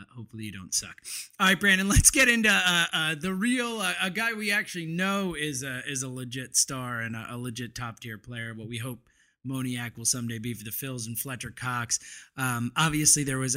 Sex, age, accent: male, 20-39, American